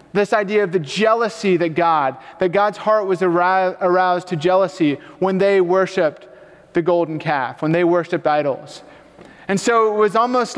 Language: English